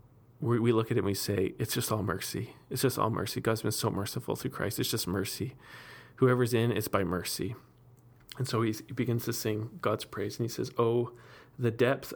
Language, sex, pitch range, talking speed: English, male, 110-125 Hz, 215 wpm